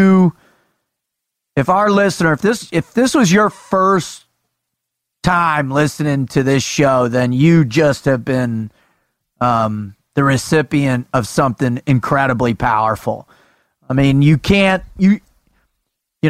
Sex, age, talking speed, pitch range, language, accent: male, 30-49, 120 wpm, 140-185 Hz, English, American